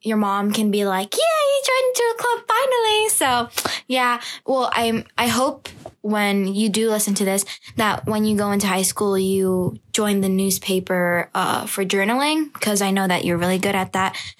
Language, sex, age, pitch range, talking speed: English, female, 10-29, 190-230 Hz, 195 wpm